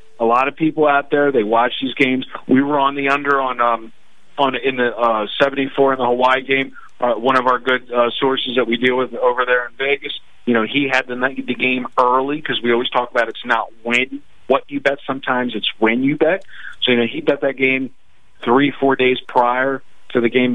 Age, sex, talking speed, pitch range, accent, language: 40-59, male, 235 wpm, 120-140 Hz, American, English